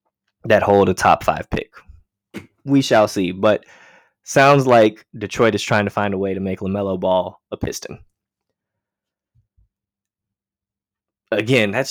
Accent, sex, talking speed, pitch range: American, male, 135 wpm, 95-110 Hz